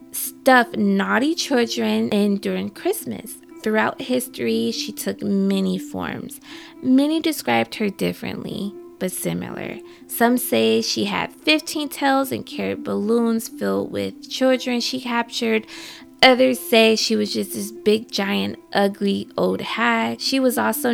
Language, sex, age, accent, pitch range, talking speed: English, female, 20-39, American, 195-265 Hz, 130 wpm